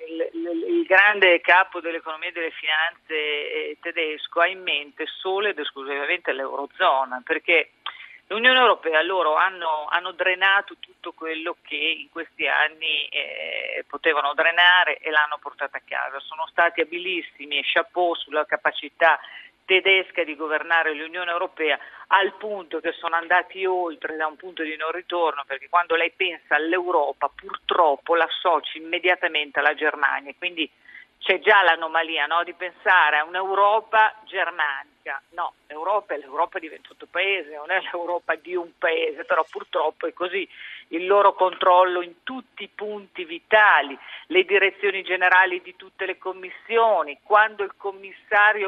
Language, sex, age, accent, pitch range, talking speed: Italian, female, 40-59, native, 160-195 Hz, 145 wpm